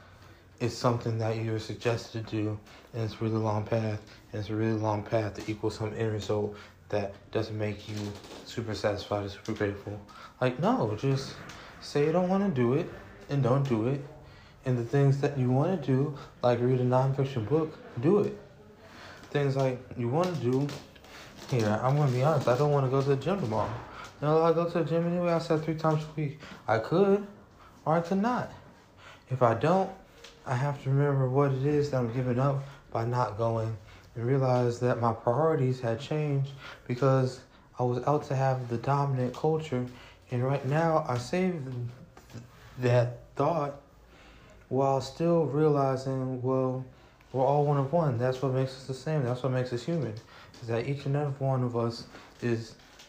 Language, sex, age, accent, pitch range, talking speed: English, male, 20-39, American, 115-145 Hz, 190 wpm